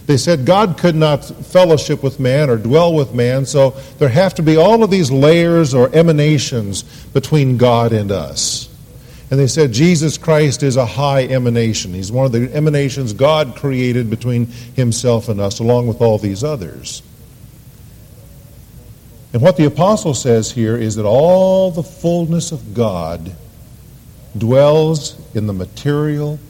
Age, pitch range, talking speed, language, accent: 50-69, 115-150 Hz, 155 wpm, English, American